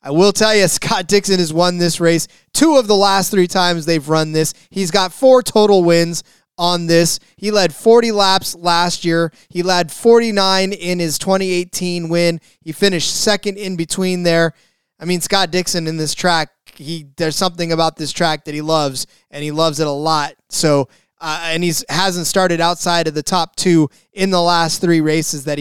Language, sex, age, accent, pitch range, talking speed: English, male, 20-39, American, 155-185 Hz, 195 wpm